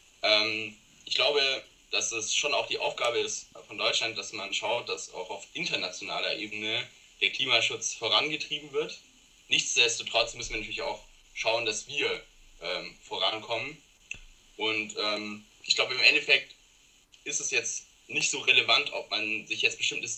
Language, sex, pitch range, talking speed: German, male, 105-130 Hz, 150 wpm